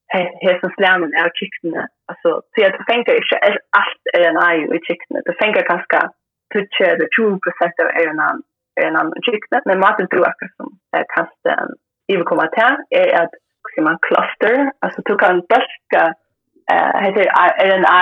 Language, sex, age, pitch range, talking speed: Danish, female, 30-49, 175-245 Hz, 125 wpm